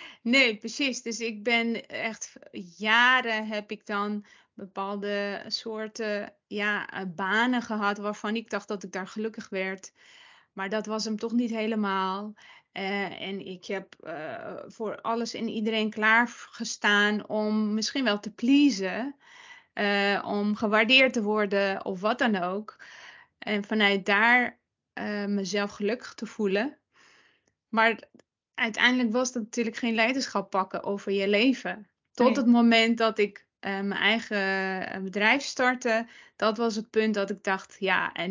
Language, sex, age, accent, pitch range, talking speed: Dutch, female, 20-39, Dutch, 200-230 Hz, 145 wpm